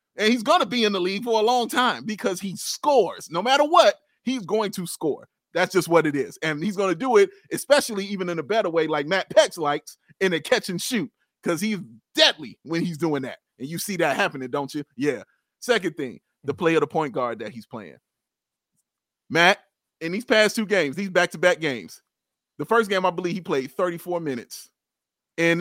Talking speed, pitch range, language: 220 wpm, 165-270 Hz, English